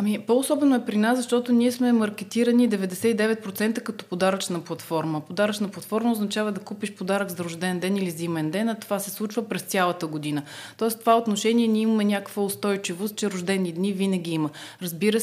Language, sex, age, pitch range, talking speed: Bulgarian, female, 30-49, 180-220 Hz, 175 wpm